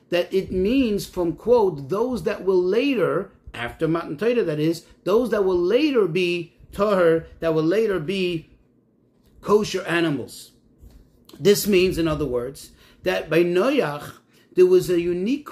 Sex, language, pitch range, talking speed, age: male, English, 165-220 Hz, 145 wpm, 40-59